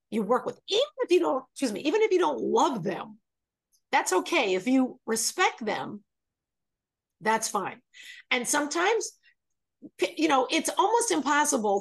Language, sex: English, female